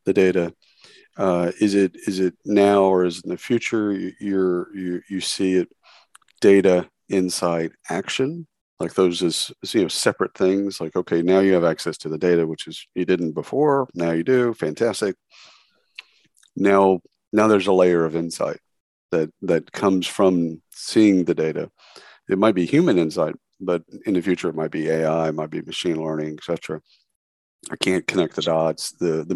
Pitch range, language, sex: 85-100 Hz, English, male